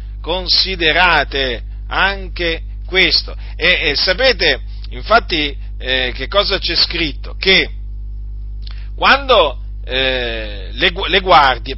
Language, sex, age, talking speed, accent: Italian, male, 40-59, 90 wpm, native